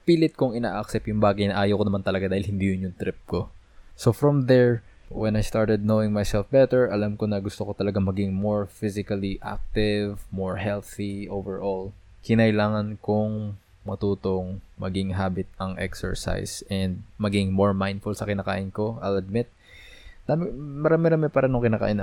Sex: male